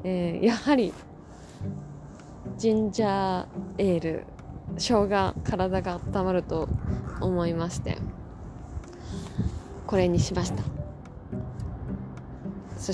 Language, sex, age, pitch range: Japanese, female, 20-39, 165-220 Hz